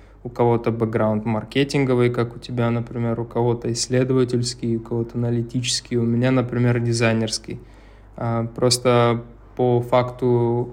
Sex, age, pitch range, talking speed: male, 20-39, 115-125 Hz, 115 wpm